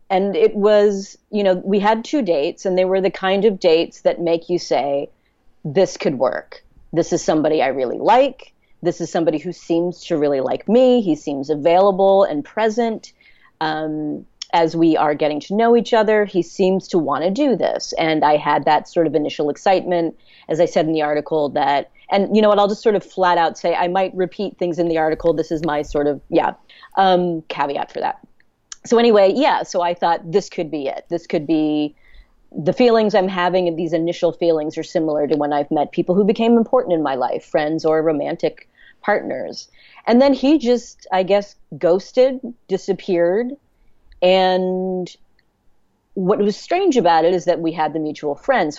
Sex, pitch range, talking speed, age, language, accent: female, 160-205 Hz, 200 wpm, 30-49, English, American